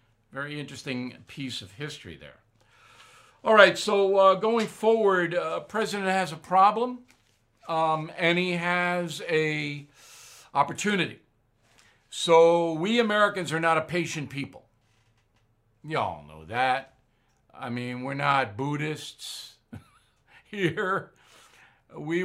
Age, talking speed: 60-79, 110 wpm